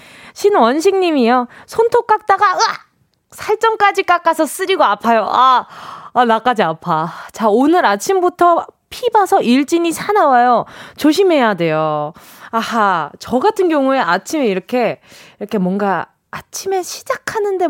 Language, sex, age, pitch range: Korean, female, 20-39, 215-310 Hz